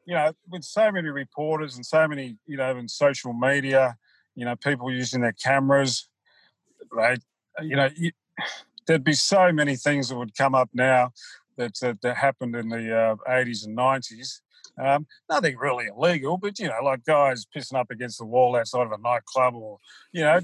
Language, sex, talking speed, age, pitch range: English, male, 190 wpm, 40-59, 125-150 Hz